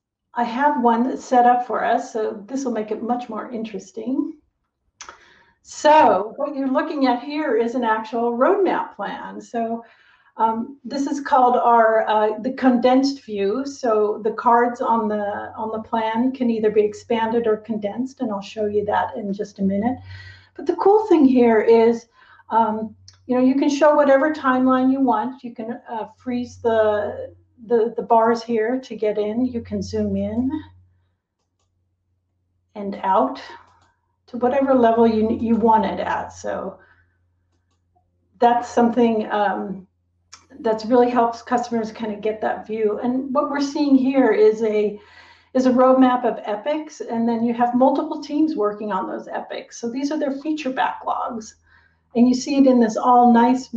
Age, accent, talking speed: 40-59, American, 170 wpm